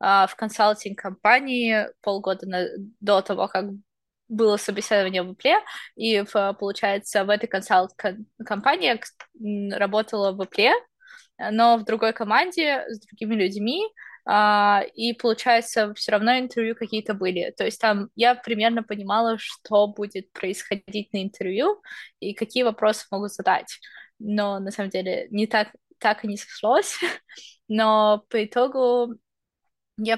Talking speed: 125 wpm